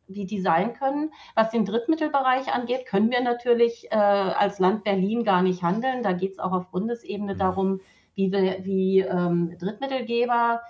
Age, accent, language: 40-59, German, German